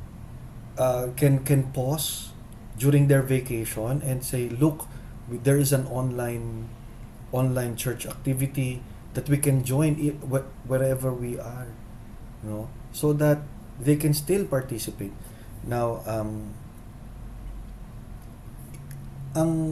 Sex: male